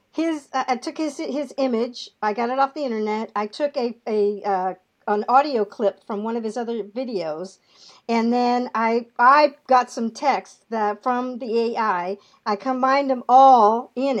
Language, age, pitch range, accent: English, 50-69, 230-290 Hz, American